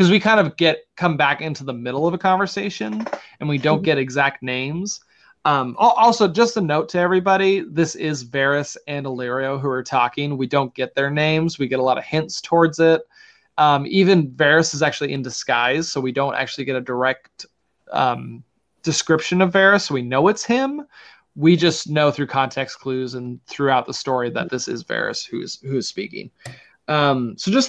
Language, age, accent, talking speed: English, 20-39, American, 195 wpm